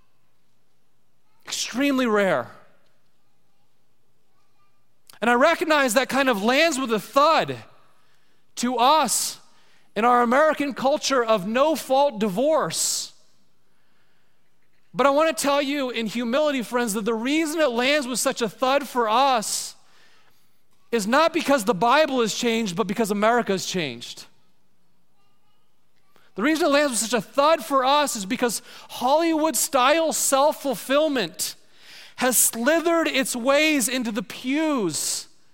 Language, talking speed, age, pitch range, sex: English, 125 wpm, 30-49, 230-285 Hz, male